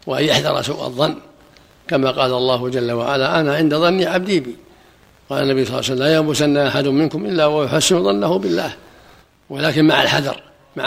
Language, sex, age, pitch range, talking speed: Arabic, male, 60-79, 140-155 Hz, 175 wpm